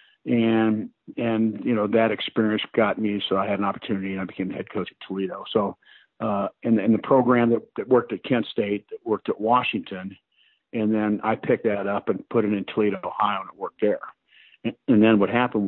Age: 50-69